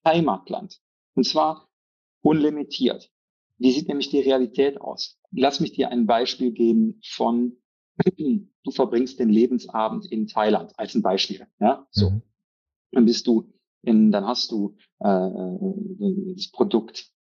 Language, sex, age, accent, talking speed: German, male, 40-59, German, 130 wpm